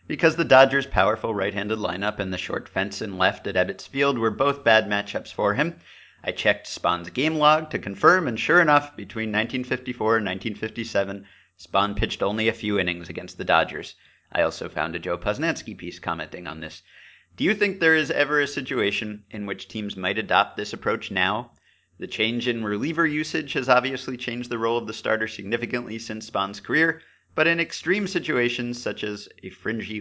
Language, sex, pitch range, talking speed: English, male, 105-140 Hz, 190 wpm